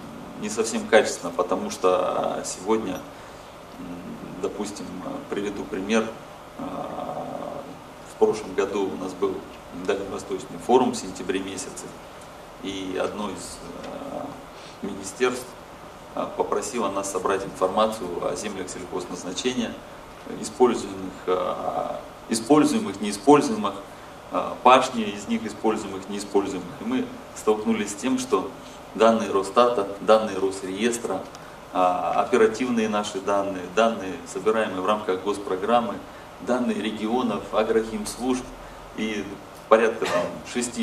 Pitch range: 100-135 Hz